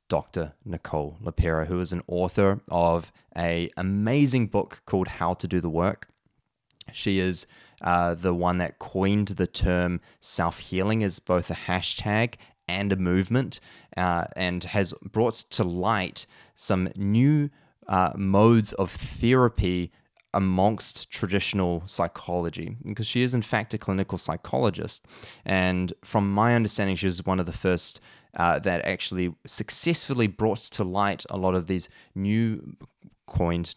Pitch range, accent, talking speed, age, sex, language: 85-100 Hz, Australian, 140 wpm, 20-39, male, English